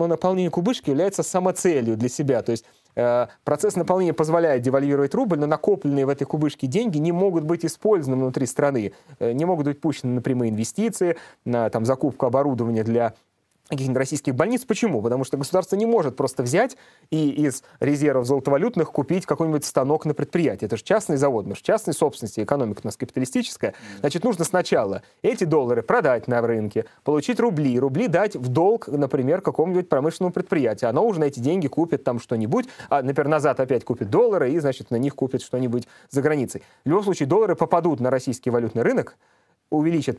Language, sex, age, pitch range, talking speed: Russian, male, 30-49, 125-170 Hz, 180 wpm